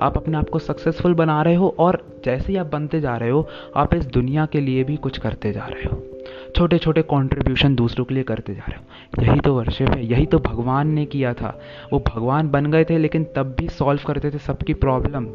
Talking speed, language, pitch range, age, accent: 235 wpm, Hindi, 125-155 Hz, 20-39, native